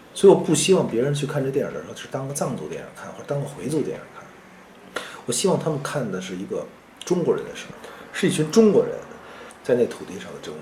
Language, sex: Chinese, male